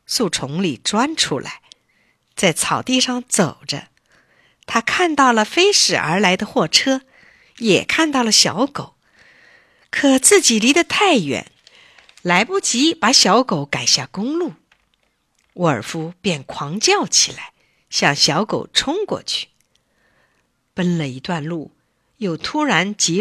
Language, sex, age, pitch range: Chinese, female, 50-69, 165-265 Hz